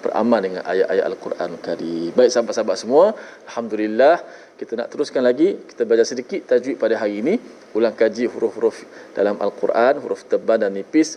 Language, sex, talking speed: Malayalam, male, 155 wpm